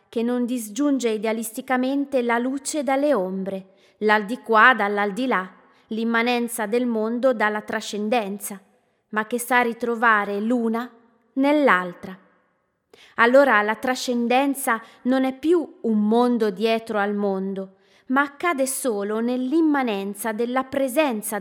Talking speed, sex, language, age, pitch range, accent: 110 wpm, female, Italian, 20-39, 210-255 Hz, native